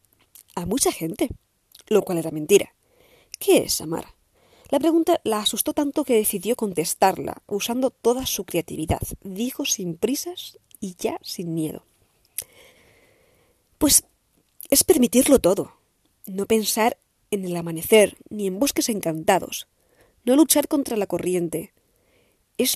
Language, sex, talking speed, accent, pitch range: Spanish, female, 125 wpm, Spanish, 180-285 Hz